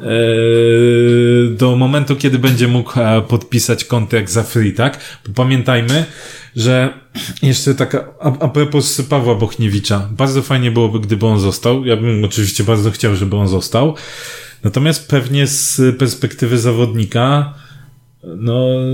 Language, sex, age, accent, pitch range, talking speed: Polish, male, 20-39, native, 115-135 Hz, 120 wpm